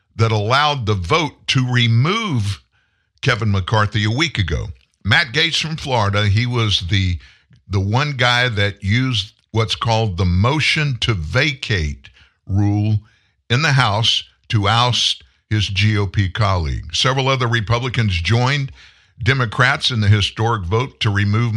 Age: 50-69